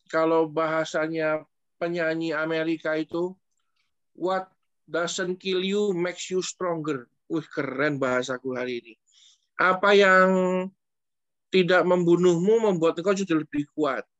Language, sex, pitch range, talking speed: Indonesian, male, 145-185 Hz, 110 wpm